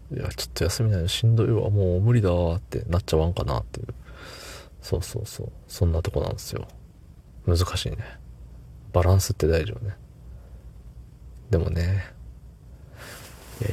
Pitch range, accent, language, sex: 80-100 Hz, native, Japanese, male